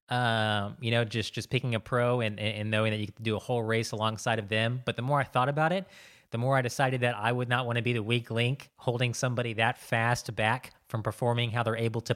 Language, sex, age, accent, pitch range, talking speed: English, male, 20-39, American, 110-125 Hz, 270 wpm